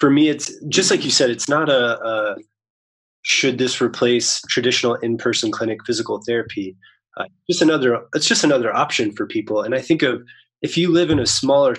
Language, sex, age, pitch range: English, male, 20-39, 120-180 Hz